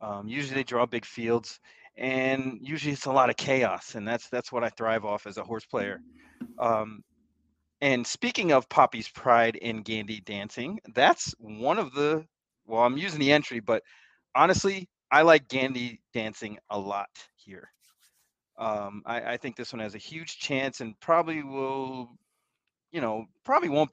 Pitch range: 110-140 Hz